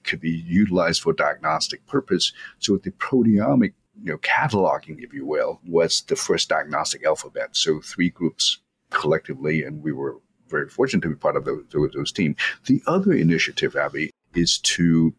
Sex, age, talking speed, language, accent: male, 50-69, 170 wpm, English, American